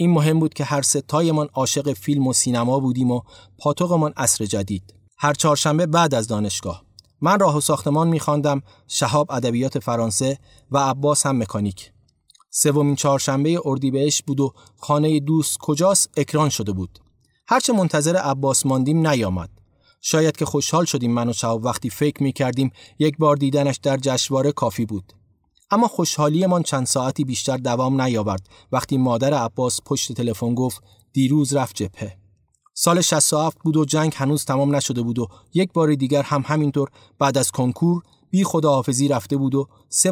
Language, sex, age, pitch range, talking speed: Persian, male, 30-49, 120-150 Hz, 160 wpm